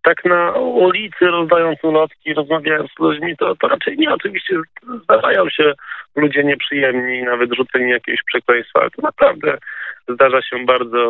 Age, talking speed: 20-39, 150 wpm